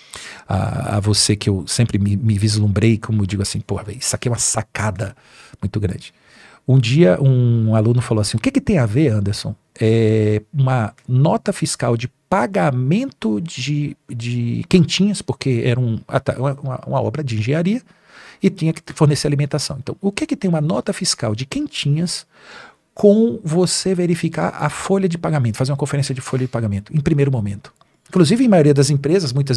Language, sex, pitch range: Portuguese, male, 120-175 Hz